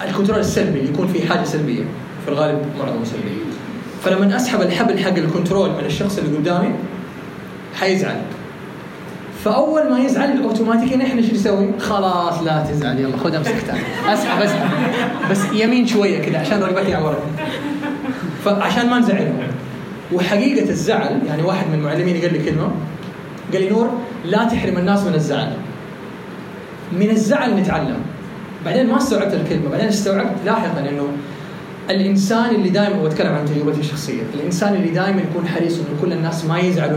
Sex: male